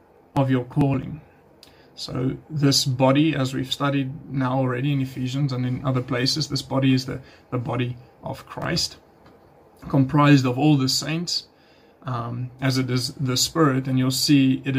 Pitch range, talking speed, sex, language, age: 130-145 Hz, 160 wpm, male, English, 20-39